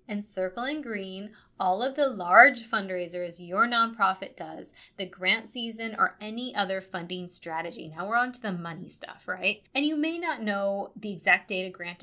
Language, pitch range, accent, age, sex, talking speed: English, 180-230 Hz, American, 20-39, female, 190 wpm